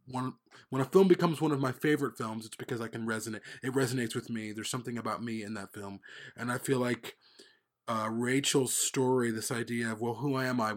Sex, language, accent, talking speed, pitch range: male, English, American, 225 wpm, 115-135 Hz